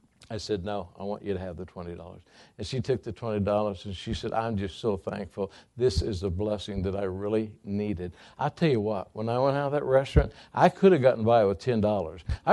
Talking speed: 230 wpm